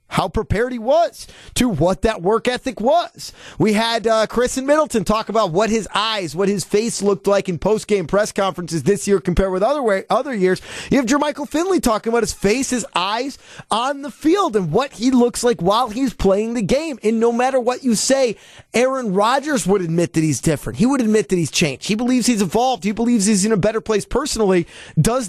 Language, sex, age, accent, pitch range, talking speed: English, male, 30-49, American, 200-255 Hz, 220 wpm